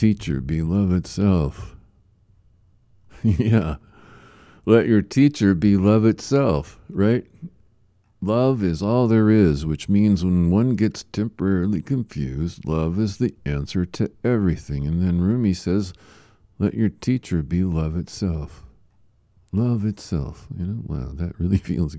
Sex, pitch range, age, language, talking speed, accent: male, 85-110 Hz, 50-69, English, 130 wpm, American